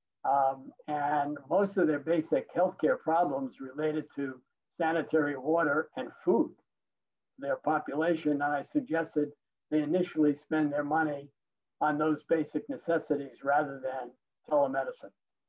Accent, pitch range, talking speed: American, 150-195 Hz, 120 wpm